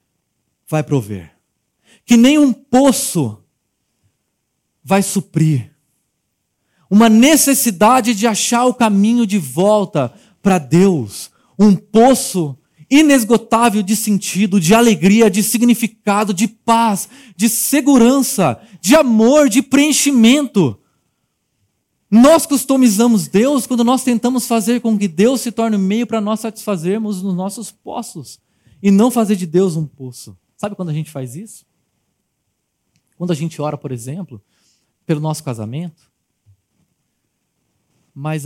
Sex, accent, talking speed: male, Brazilian, 120 wpm